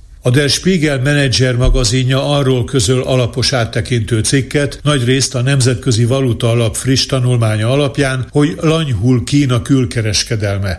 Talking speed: 120 wpm